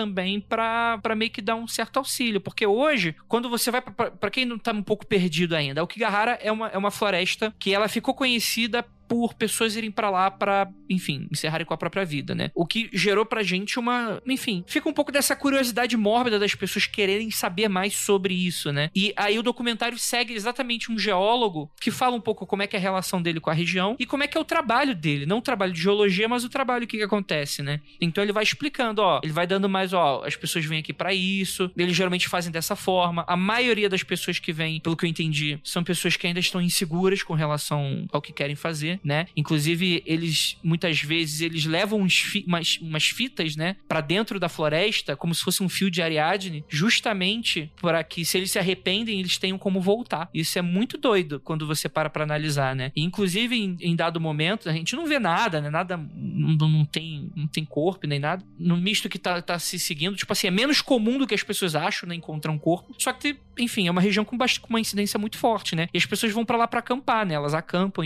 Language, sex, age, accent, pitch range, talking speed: Portuguese, male, 20-39, Brazilian, 165-225 Hz, 230 wpm